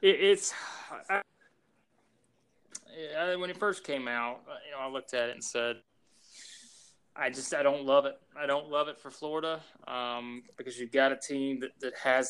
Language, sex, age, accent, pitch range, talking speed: English, male, 20-39, American, 125-160 Hz, 160 wpm